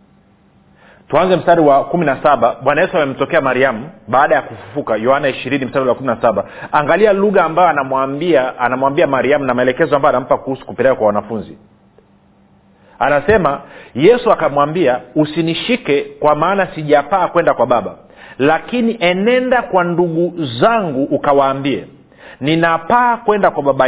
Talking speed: 130 wpm